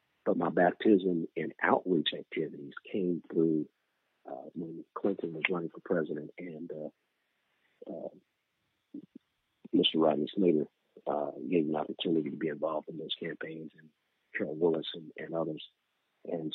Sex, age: male, 50-69